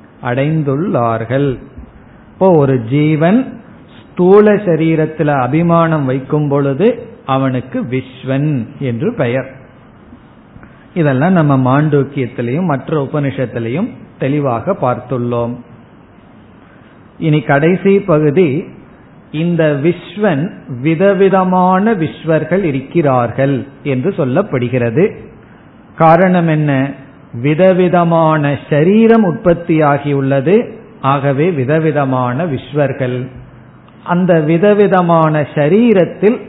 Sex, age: male, 50-69